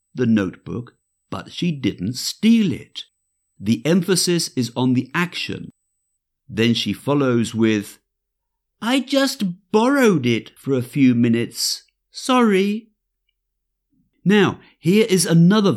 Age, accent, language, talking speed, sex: 50-69, British, English, 115 wpm, male